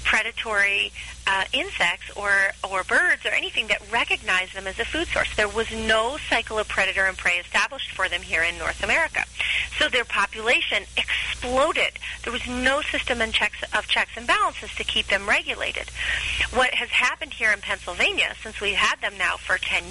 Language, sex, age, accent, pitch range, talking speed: English, female, 40-59, American, 195-250 Hz, 180 wpm